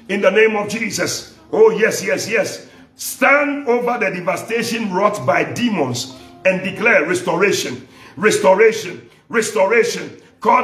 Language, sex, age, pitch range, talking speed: English, male, 50-69, 190-260 Hz, 125 wpm